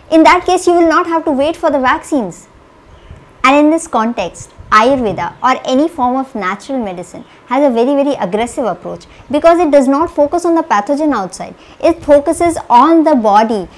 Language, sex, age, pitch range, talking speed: English, male, 50-69, 245-315 Hz, 185 wpm